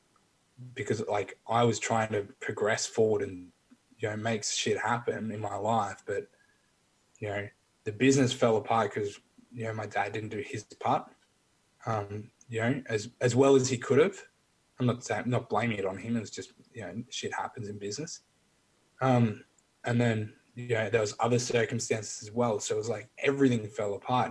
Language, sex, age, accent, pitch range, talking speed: English, male, 20-39, Australian, 105-125 Hz, 195 wpm